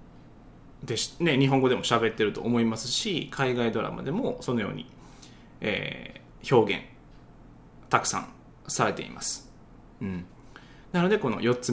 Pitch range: 115-185 Hz